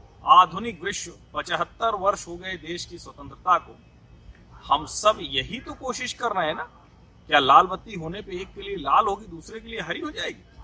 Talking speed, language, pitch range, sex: 195 wpm, Hindi, 145-215 Hz, male